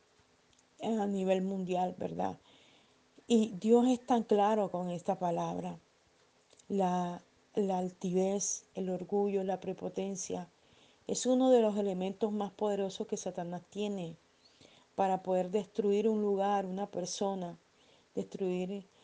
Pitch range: 190-215 Hz